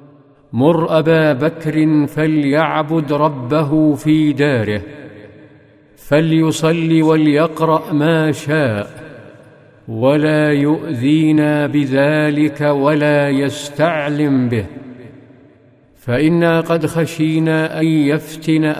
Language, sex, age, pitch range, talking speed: Arabic, male, 50-69, 135-155 Hz, 70 wpm